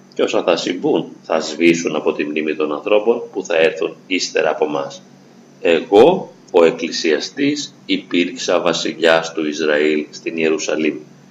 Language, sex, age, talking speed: Greek, male, 40-59, 140 wpm